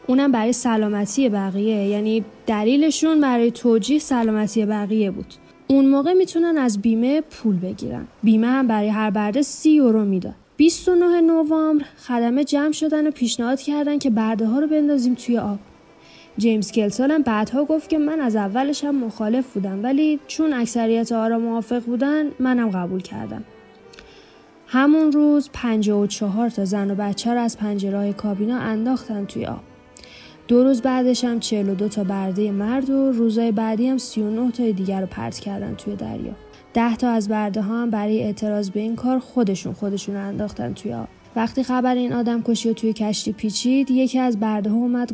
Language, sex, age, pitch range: Persian, female, 10-29, 210-260 Hz